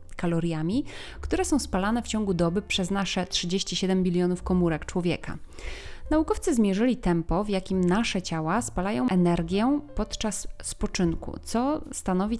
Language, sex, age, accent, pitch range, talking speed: Polish, female, 30-49, native, 180-230 Hz, 125 wpm